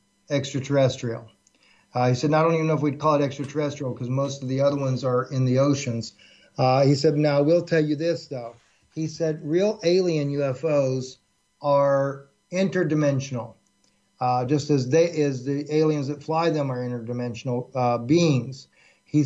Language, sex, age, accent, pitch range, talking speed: English, male, 50-69, American, 135-160 Hz, 170 wpm